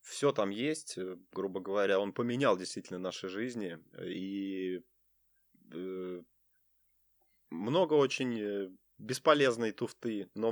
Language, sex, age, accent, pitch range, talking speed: Ukrainian, male, 20-39, native, 95-125 Hz, 90 wpm